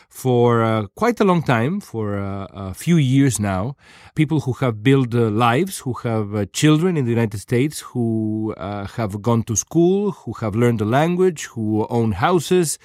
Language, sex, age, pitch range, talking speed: Spanish, male, 40-59, 115-145 Hz, 185 wpm